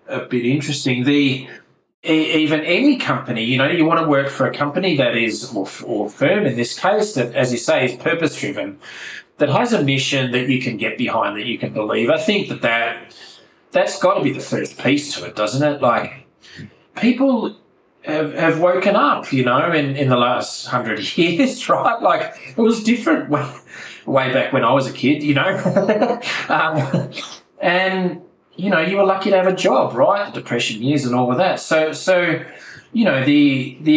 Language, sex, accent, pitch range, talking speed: English, male, Australian, 125-175 Hz, 200 wpm